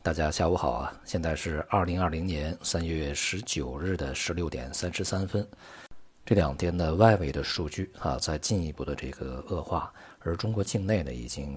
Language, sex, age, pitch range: Chinese, male, 50-69, 70-95 Hz